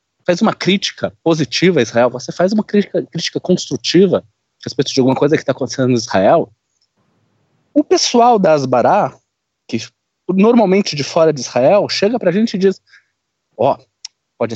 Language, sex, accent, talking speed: Portuguese, male, Brazilian, 170 wpm